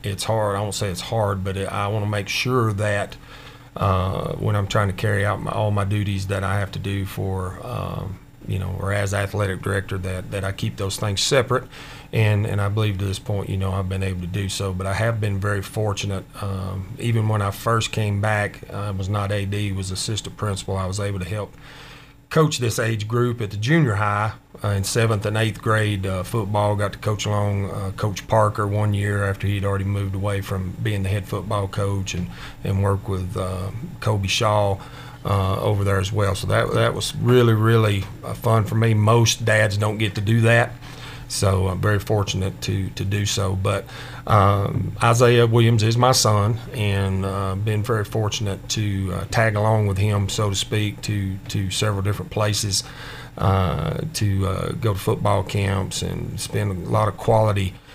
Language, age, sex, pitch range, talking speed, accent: English, 40-59, male, 100-115 Hz, 205 wpm, American